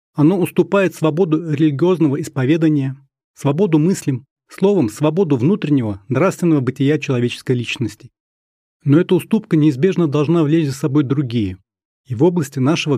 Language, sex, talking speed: Russian, male, 125 wpm